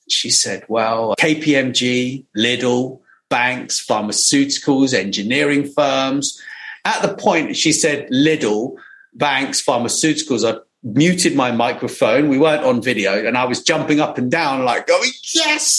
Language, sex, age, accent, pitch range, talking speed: English, male, 40-59, British, 120-190 Hz, 135 wpm